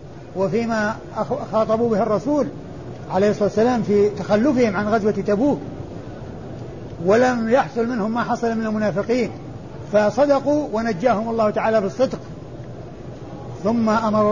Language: Arabic